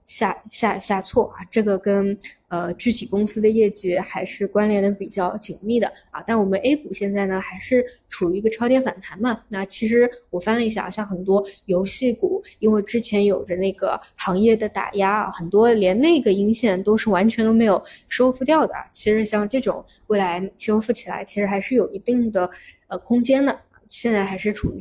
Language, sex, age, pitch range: Chinese, female, 20-39, 190-225 Hz